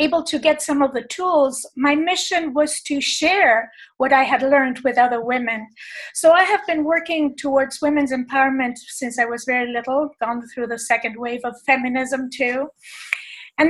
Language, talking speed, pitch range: English, 180 wpm, 250-295 Hz